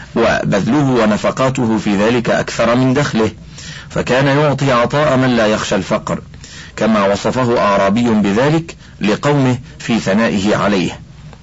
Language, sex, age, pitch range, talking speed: Arabic, male, 50-69, 110-155 Hz, 115 wpm